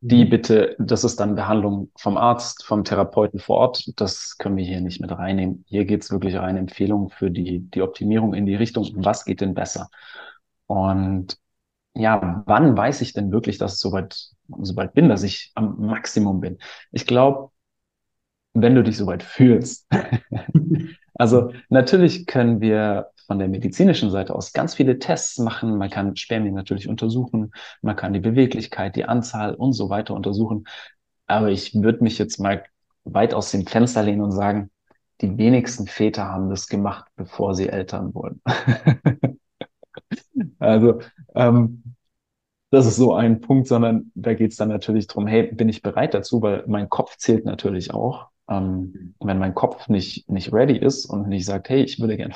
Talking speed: 170 wpm